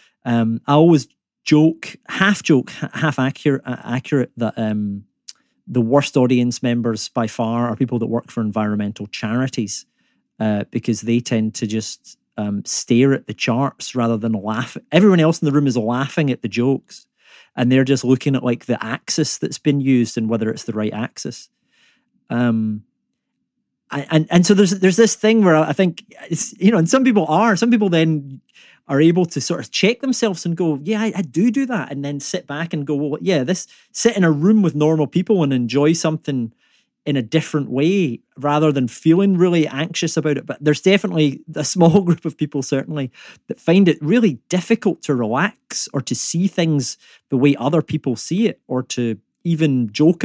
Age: 30-49